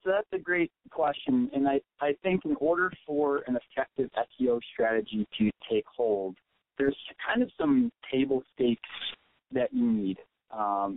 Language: English